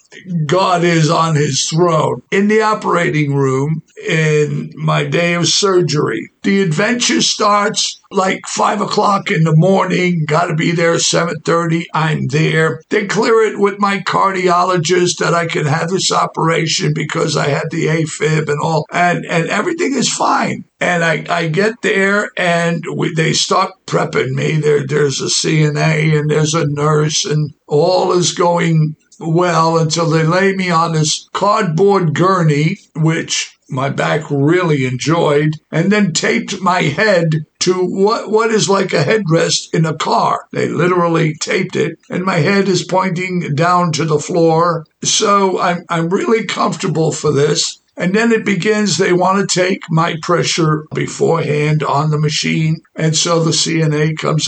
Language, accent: English, American